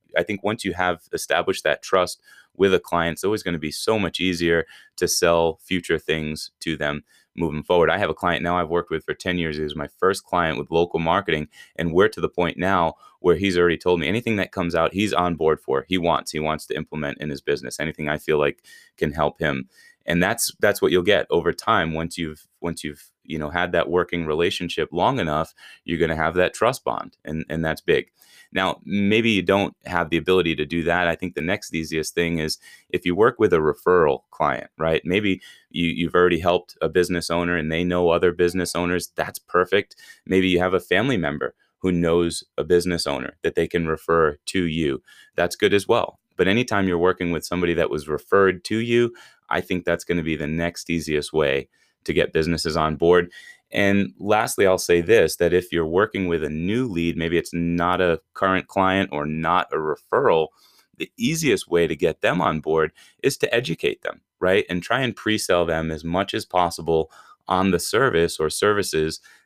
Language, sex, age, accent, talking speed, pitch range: English, male, 30-49, American, 215 wpm, 80-90 Hz